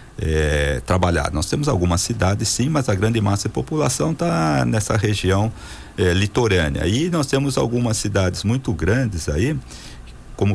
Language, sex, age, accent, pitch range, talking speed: Portuguese, male, 50-69, Brazilian, 85-110 Hz, 155 wpm